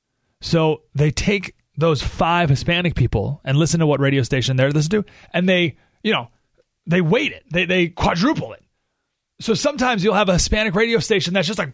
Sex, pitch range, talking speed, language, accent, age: male, 130-180 Hz, 195 wpm, English, American, 30-49